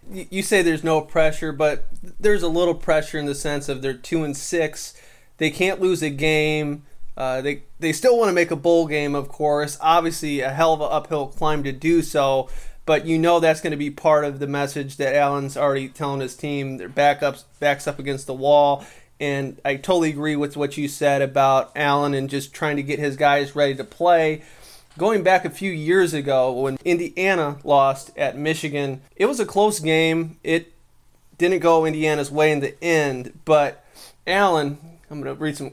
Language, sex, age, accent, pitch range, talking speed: English, male, 20-39, American, 140-160 Hz, 200 wpm